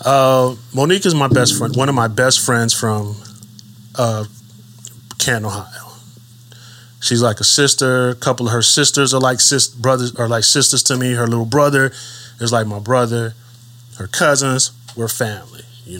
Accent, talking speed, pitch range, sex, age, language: American, 155 wpm, 115-125 Hz, male, 20-39, English